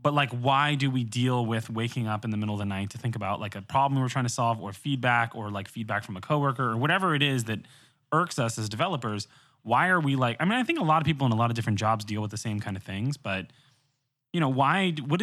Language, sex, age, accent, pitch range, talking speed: English, male, 20-39, American, 110-135 Hz, 285 wpm